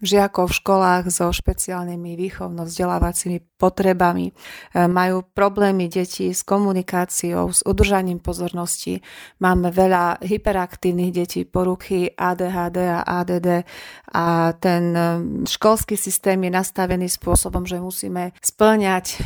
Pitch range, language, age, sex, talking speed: 175-195 Hz, Slovak, 30-49, female, 105 wpm